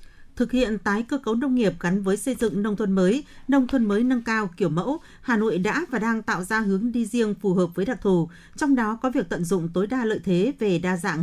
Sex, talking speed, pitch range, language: female, 260 wpm, 185-245 Hz, Vietnamese